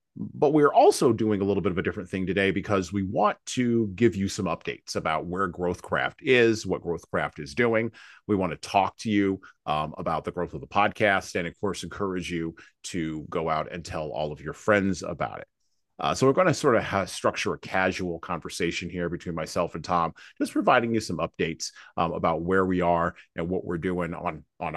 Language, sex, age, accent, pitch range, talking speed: English, male, 40-59, American, 90-115 Hz, 220 wpm